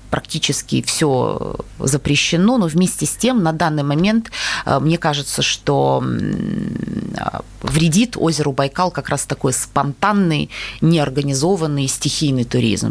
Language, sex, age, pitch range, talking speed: Russian, female, 30-49, 125-155 Hz, 105 wpm